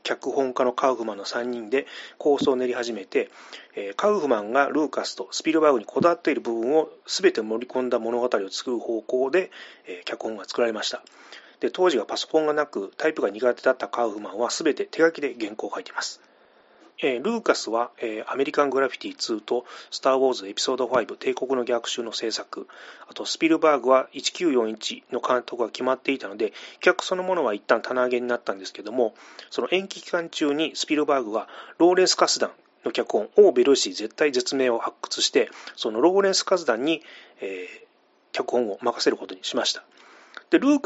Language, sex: Japanese, male